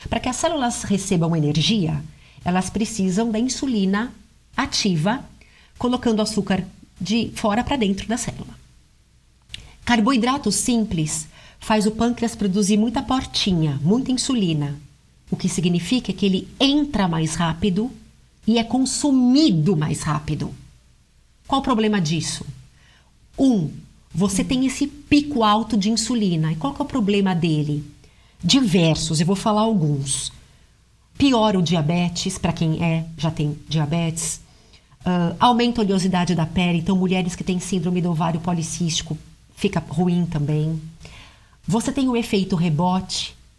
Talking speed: 130 wpm